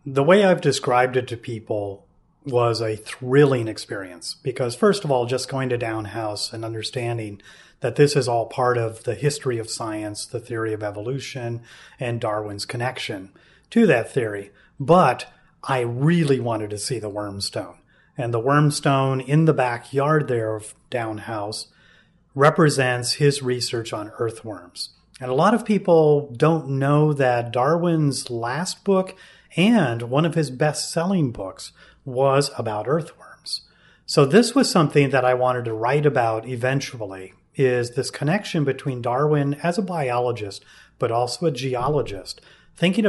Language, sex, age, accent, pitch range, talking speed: English, male, 30-49, American, 120-150 Hz, 150 wpm